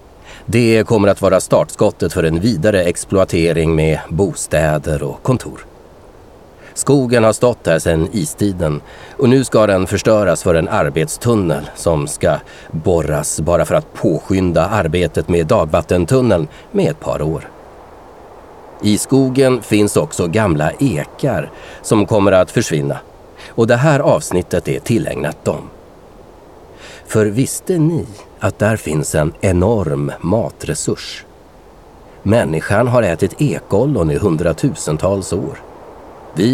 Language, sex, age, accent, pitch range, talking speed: Swedish, male, 30-49, native, 85-120 Hz, 125 wpm